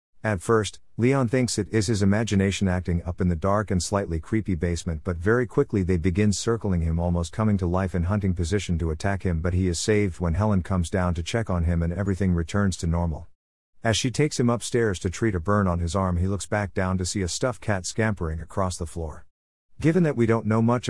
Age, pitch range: 50-69, 90-110 Hz